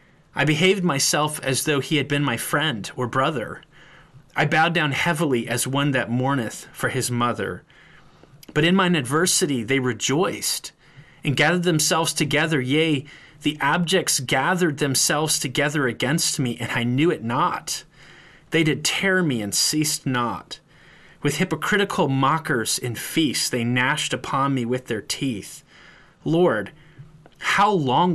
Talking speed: 145 wpm